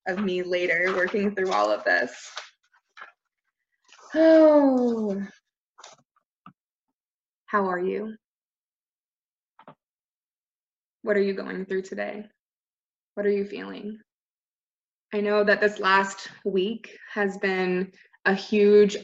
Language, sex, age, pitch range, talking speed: English, female, 20-39, 185-215 Hz, 100 wpm